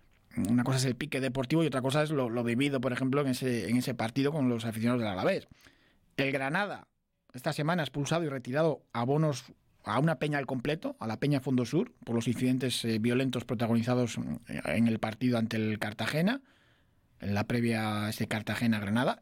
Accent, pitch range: Spanish, 120-150 Hz